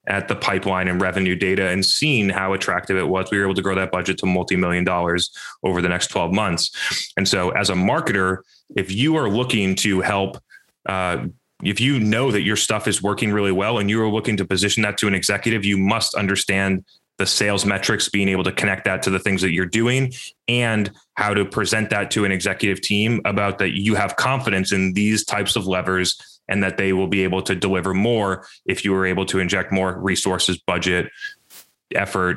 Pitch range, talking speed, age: 95-110 Hz, 210 wpm, 20-39